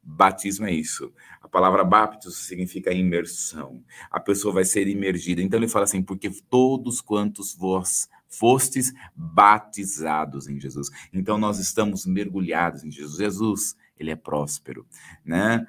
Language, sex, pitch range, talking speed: Portuguese, male, 90-110 Hz, 140 wpm